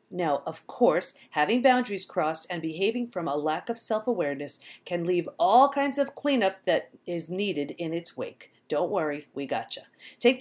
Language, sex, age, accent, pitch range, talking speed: English, female, 40-59, American, 165-230 Hz, 175 wpm